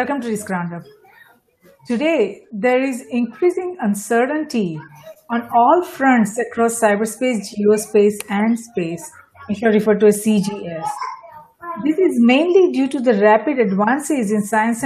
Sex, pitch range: female, 215-275 Hz